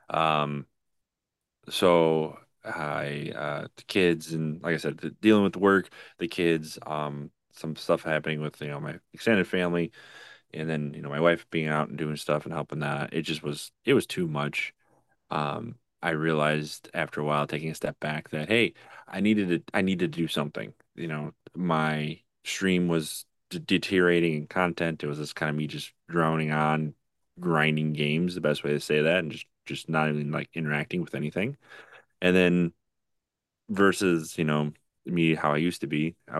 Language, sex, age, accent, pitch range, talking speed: English, male, 30-49, American, 75-85 Hz, 190 wpm